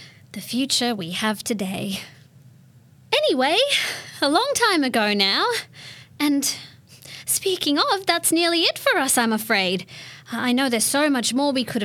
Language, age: English, 20-39